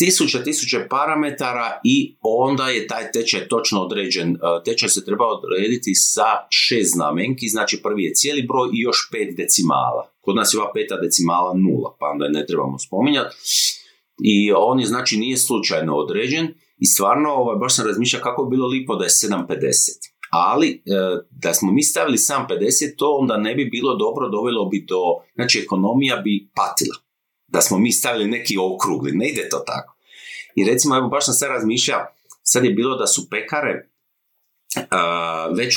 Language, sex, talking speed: Croatian, male, 170 wpm